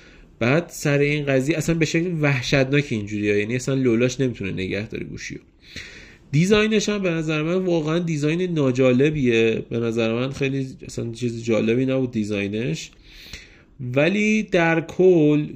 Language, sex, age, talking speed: Persian, male, 30-49, 145 wpm